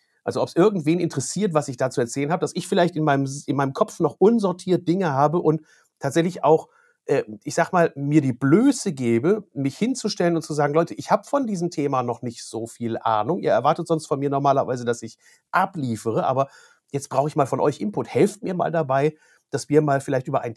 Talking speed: 220 wpm